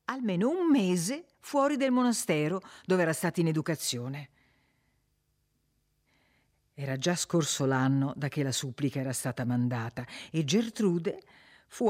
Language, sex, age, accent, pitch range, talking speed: Italian, female, 50-69, native, 140-190 Hz, 125 wpm